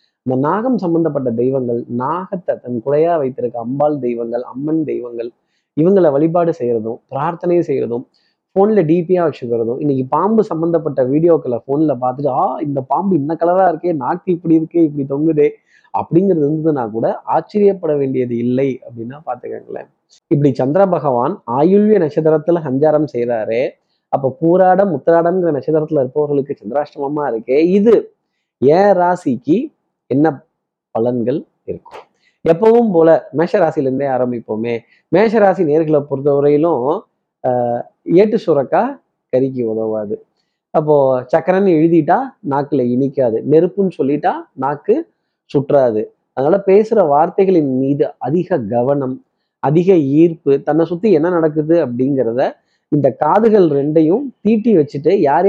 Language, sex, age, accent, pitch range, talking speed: Tamil, male, 20-39, native, 130-175 Hz, 105 wpm